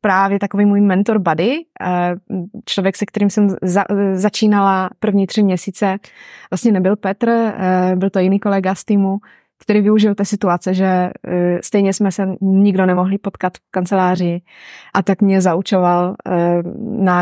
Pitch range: 180-210 Hz